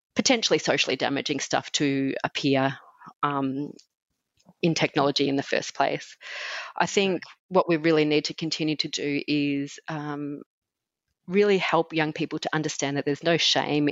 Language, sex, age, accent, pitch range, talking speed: English, female, 30-49, Australian, 145-175 Hz, 150 wpm